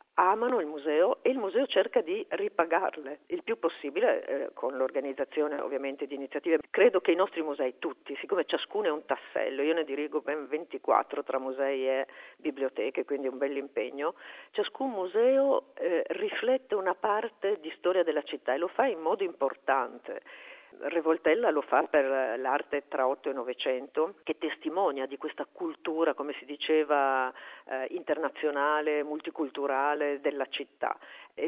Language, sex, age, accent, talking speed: Italian, female, 50-69, native, 150 wpm